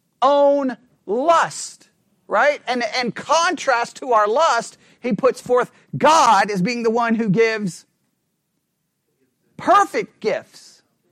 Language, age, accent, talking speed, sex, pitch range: English, 40-59, American, 115 wpm, male, 205-270 Hz